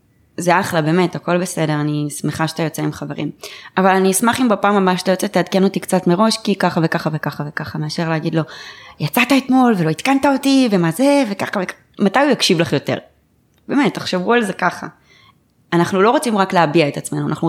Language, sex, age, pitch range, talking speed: Hebrew, female, 20-39, 150-185 Hz, 200 wpm